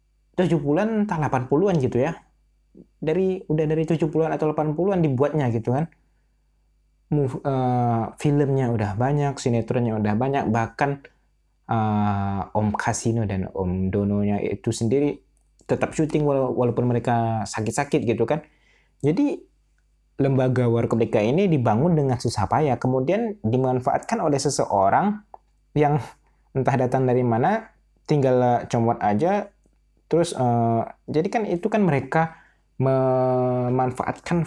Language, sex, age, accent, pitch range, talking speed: Indonesian, male, 20-39, native, 110-145 Hz, 115 wpm